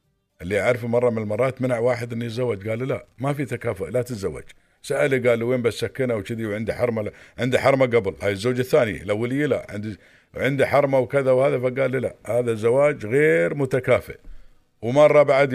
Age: 50-69